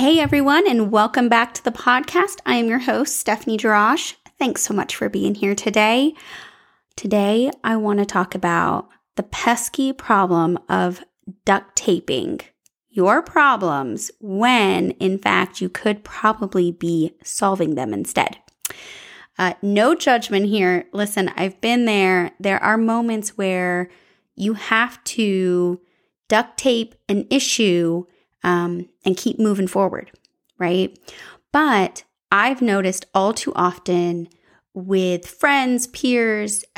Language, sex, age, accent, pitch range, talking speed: English, female, 20-39, American, 185-235 Hz, 130 wpm